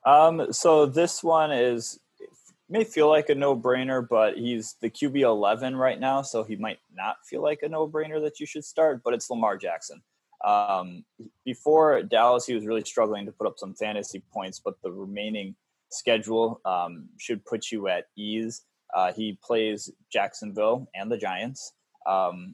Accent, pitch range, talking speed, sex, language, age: American, 105-150 Hz, 170 wpm, male, English, 20-39